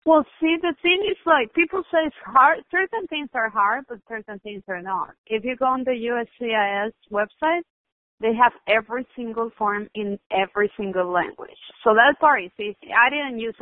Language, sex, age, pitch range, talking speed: English, female, 30-49, 195-240 Hz, 190 wpm